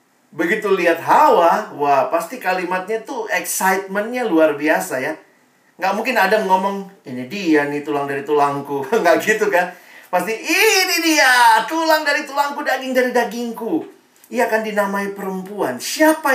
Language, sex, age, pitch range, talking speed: Indonesian, male, 40-59, 145-240 Hz, 140 wpm